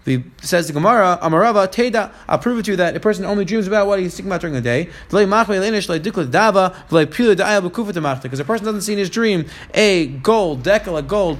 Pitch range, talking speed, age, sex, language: 160-200 Hz, 200 wpm, 20-39, male, English